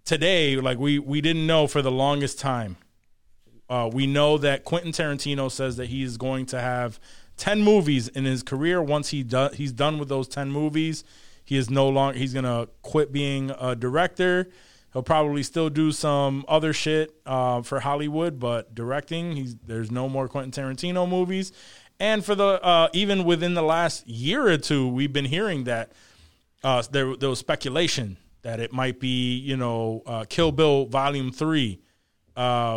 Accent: American